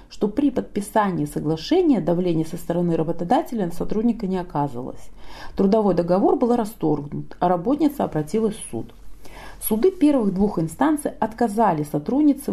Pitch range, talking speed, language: 170-255 Hz, 130 wpm, Russian